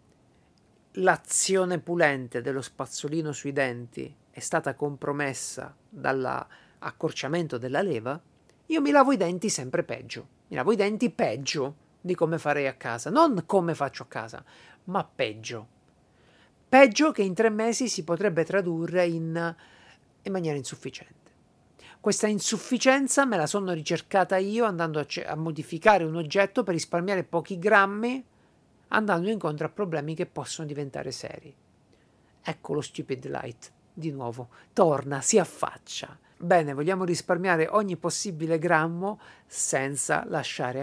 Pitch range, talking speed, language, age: 145-200 Hz, 130 wpm, Italian, 50-69